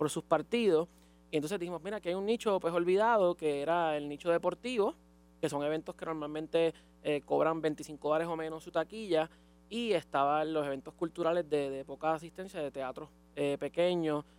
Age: 20-39